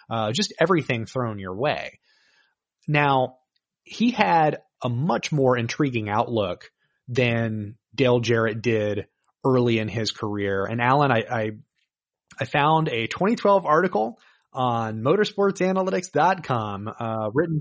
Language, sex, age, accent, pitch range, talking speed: English, male, 30-49, American, 115-155 Hz, 120 wpm